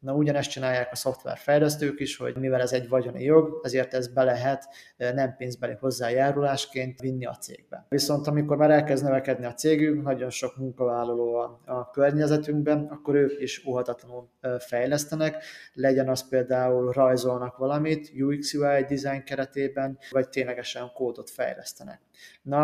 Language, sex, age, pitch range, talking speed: Hungarian, male, 30-49, 130-145 Hz, 140 wpm